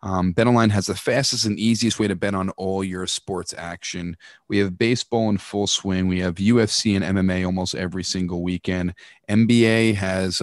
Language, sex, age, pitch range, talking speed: English, male, 30-49, 95-115 Hz, 185 wpm